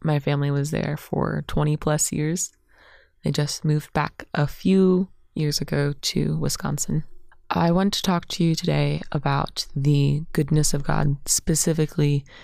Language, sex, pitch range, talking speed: English, female, 140-165 Hz, 150 wpm